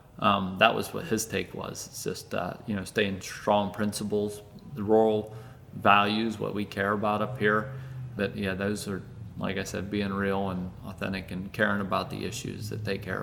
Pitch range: 95-110 Hz